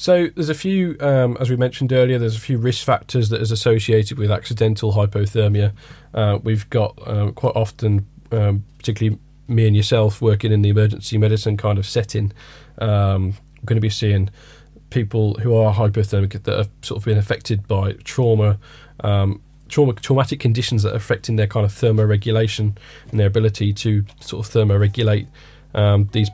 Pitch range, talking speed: 105-115 Hz, 175 wpm